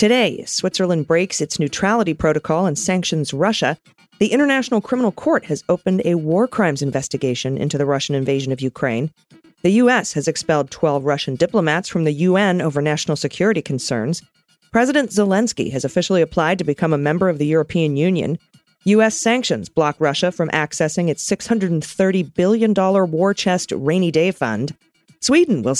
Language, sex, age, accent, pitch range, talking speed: English, female, 40-59, American, 155-215 Hz, 160 wpm